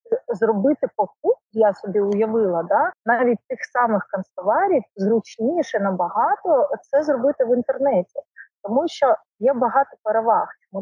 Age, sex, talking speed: 30-49, female, 120 wpm